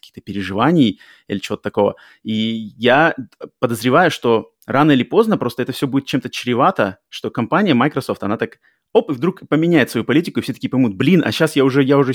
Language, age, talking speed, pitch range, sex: Russian, 20-39, 190 wpm, 115-140 Hz, male